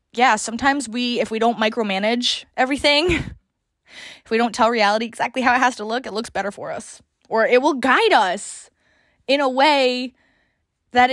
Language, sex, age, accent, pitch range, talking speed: English, female, 20-39, American, 210-255 Hz, 180 wpm